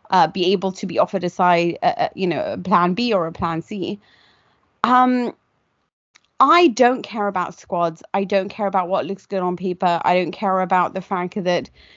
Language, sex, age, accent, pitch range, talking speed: English, female, 30-49, British, 180-220 Hz, 190 wpm